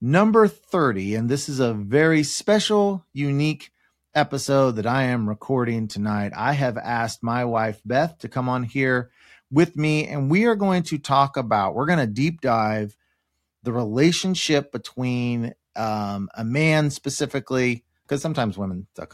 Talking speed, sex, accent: 155 wpm, male, American